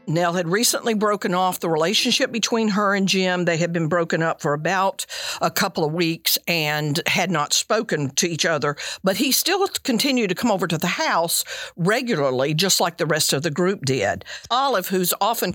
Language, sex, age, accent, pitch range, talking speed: English, female, 50-69, American, 150-200 Hz, 195 wpm